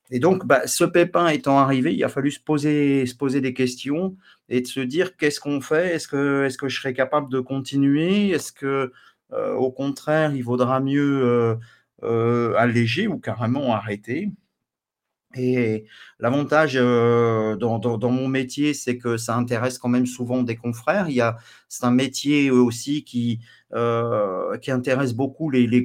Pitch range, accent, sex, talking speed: 120-140 Hz, French, male, 180 wpm